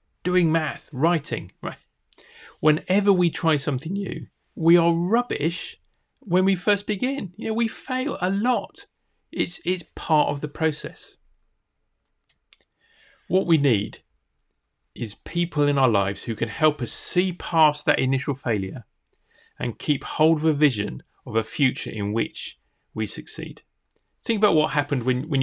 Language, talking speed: English, 150 wpm